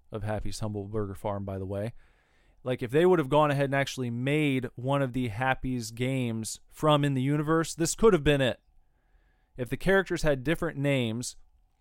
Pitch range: 100-130 Hz